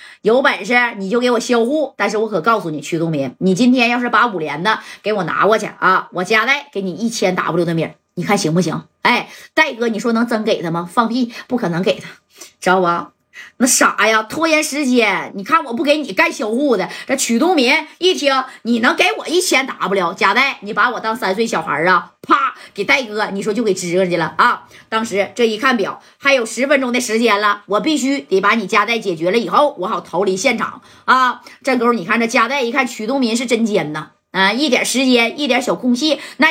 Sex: female